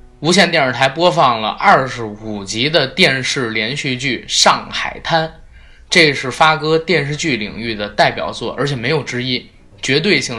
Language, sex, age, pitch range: Chinese, male, 20-39, 120-170 Hz